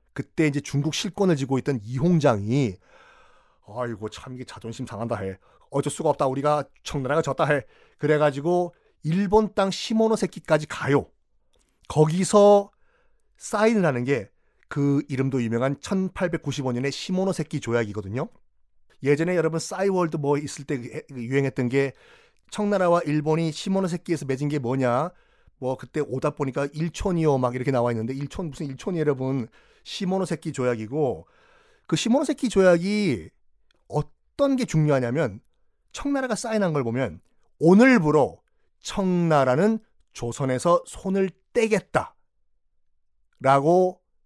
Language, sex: Korean, male